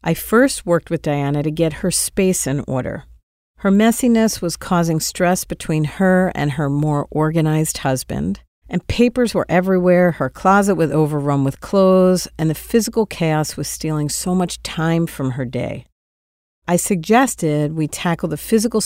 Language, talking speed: English, 160 wpm